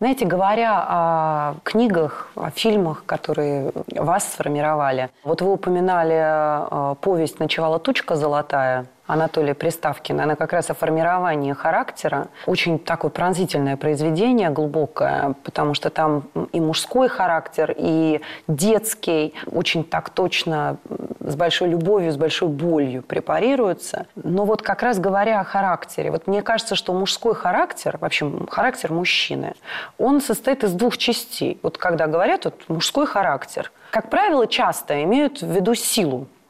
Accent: native